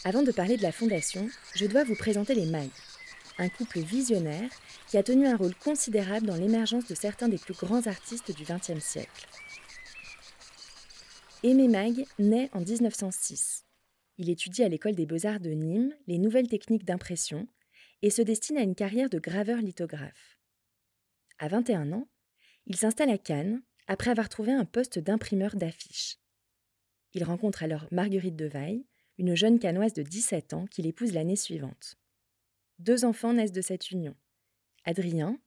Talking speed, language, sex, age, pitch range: 160 wpm, French, female, 20-39, 160-225 Hz